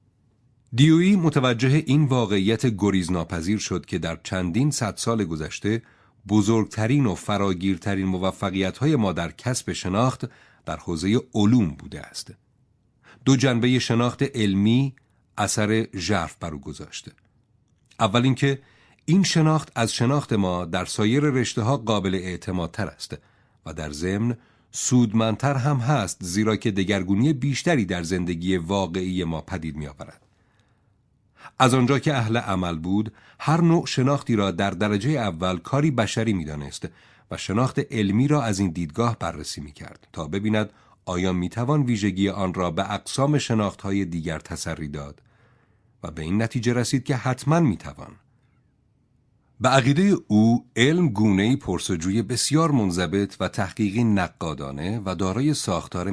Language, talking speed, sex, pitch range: Persian, 135 wpm, male, 95-130 Hz